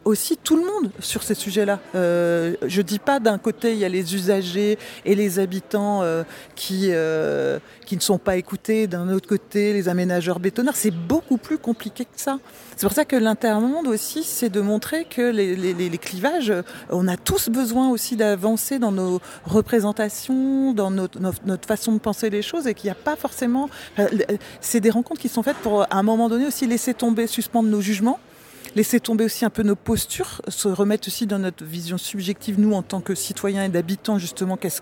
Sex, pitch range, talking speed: female, 190-235 Hz, 205 wpm